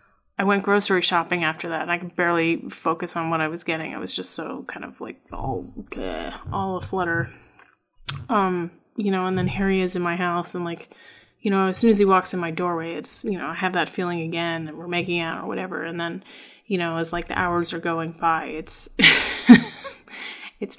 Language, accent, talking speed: English, American, 225 wpm